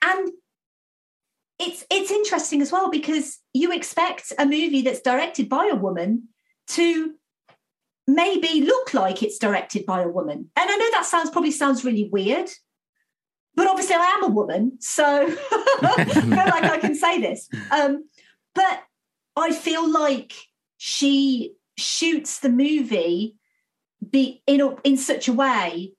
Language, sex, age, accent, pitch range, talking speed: English, female, 40-59, British, 215-285 Hz, 150 wpm